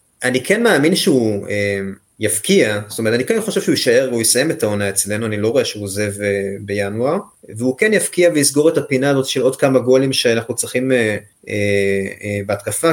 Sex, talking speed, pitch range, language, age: male, 170 wpm, 110-135 Hz, Hebrew, 30-49